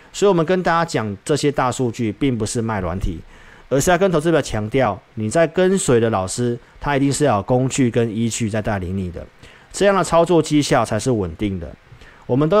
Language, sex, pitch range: Chinese, male, 105-145 Hz